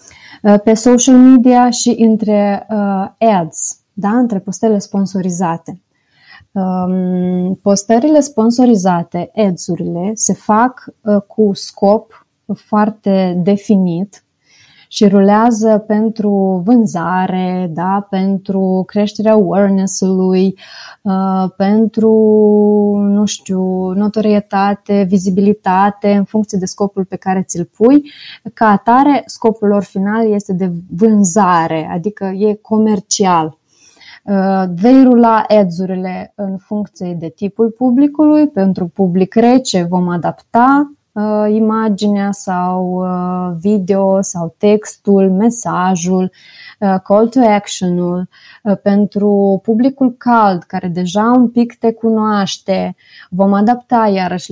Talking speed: 90 wpm